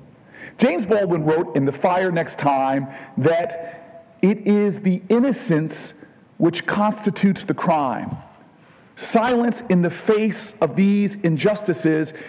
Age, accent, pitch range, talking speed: 40-59, American, 170-220 Hz, 115 wpm